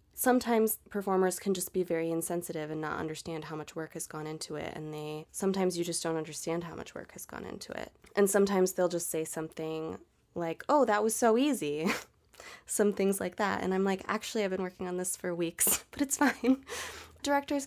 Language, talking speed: English, 210 wpm